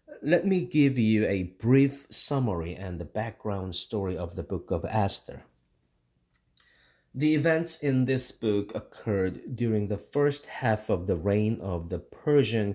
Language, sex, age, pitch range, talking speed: English, male, 30-49, 95-140 Hz, 150 wpm